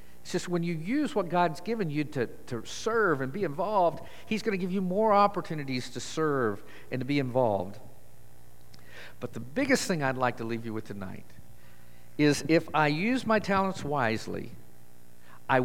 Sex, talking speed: male, 180 wpm